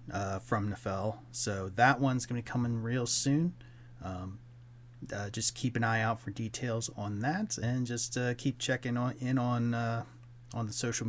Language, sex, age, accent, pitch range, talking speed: English, male, 30-49, American, 110-125 Hz, 185 wpm